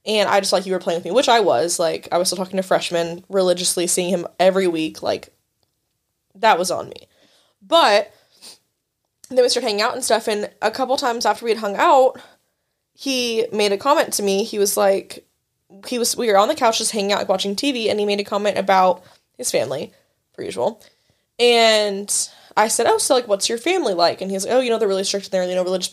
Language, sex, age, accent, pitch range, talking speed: English, female, 10-29, American, 190-235 Hz, 240 wpm